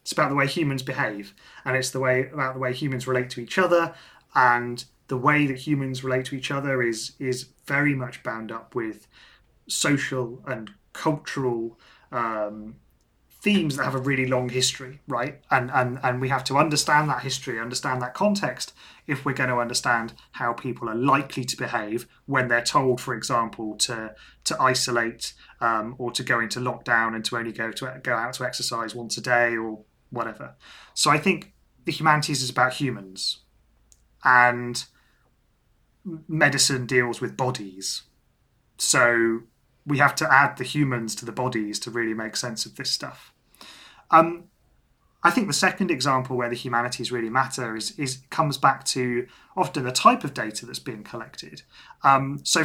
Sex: male